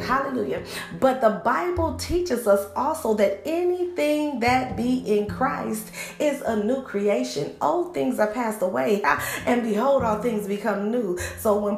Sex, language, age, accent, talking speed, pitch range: female, English, 40-59, American, 155 wpm, 200-260 Hz